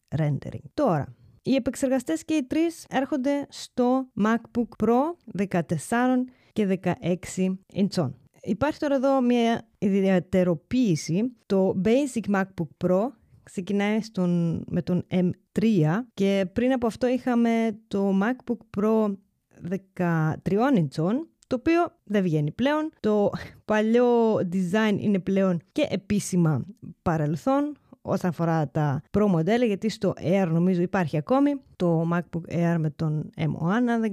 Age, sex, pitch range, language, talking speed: 20-39, female, 175-235 Hz, Greek, 120 wpm